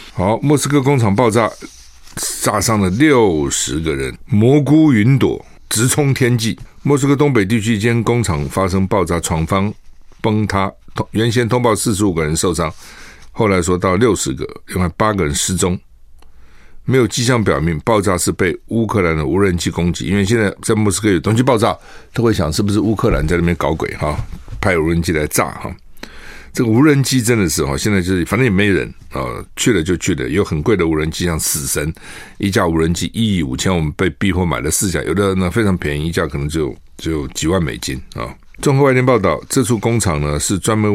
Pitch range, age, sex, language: 85-115 Hz, 60-79, male, Chinese